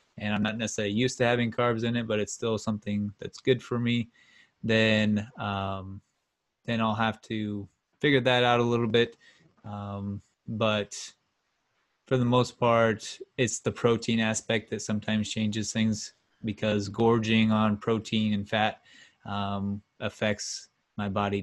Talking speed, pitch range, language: 150 wpm, 105-115 Hz, English